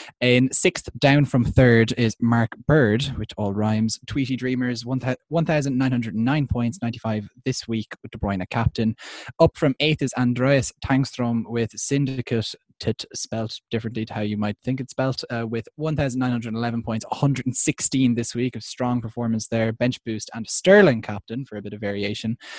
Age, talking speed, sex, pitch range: 20-39, 160 wpm, male, 110-135 Hz